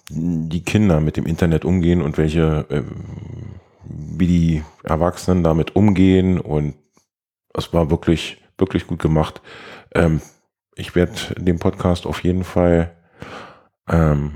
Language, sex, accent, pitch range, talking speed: German, male, German, 80-95 Hz, 125 wpm